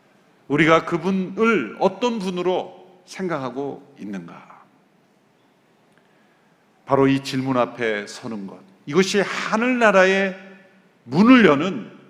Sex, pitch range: male, 120-185 Hz